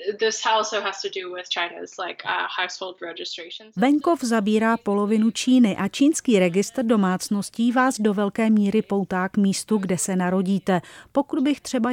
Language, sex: Czech, female